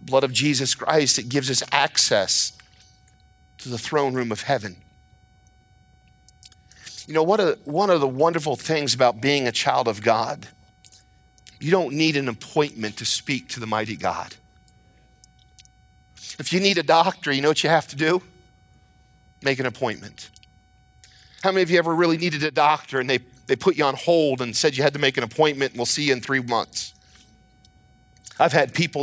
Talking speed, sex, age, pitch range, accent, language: 185 wpm, male, 40-59, 135-195 Hz, American, English